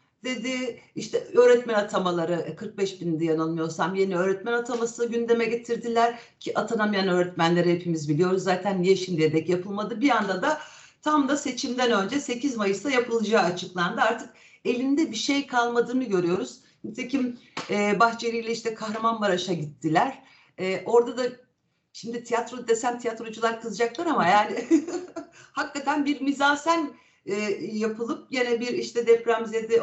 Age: 60-79